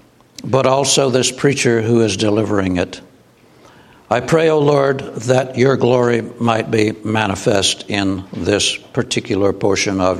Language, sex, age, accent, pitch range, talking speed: English, male, 60-79, American, 115-145 Hz, 140 wpm